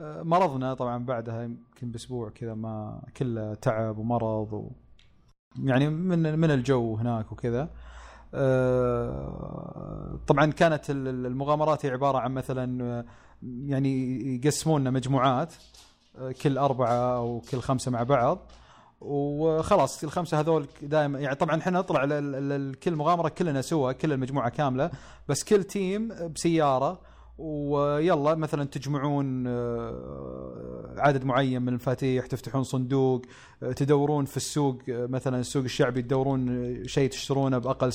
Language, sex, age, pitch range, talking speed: Arabic, male, 30-49, 125-150 Hz, 110 wpm